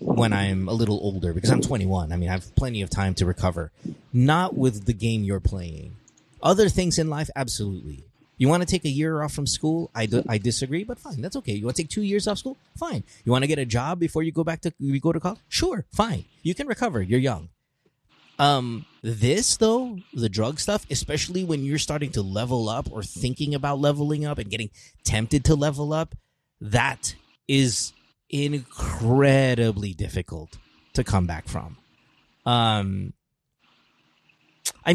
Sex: male